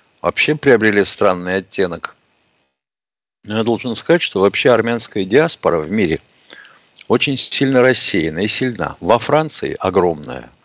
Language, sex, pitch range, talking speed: Russian, male, 100-140 Hz, 120 wpm